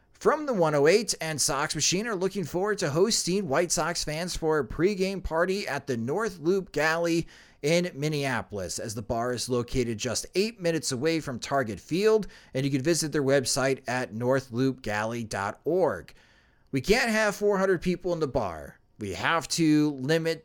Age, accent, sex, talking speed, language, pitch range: 30-49, American, male, 165 wpm, English, 130-190 Hz